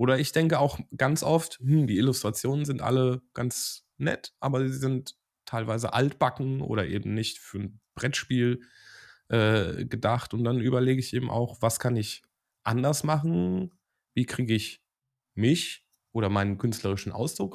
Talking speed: 155 wpm